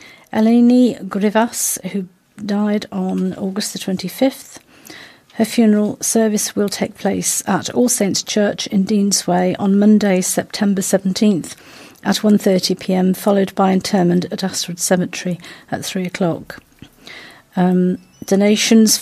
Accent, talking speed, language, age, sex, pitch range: British, 115 wpm, English, 50-69, female, 190-230 Hz